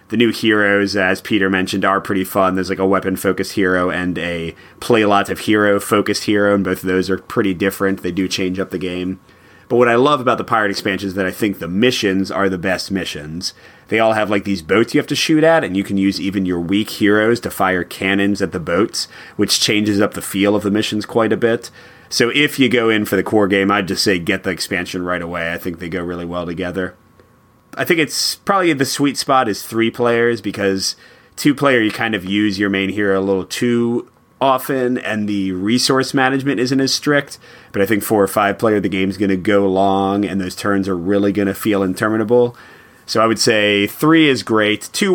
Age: 30-49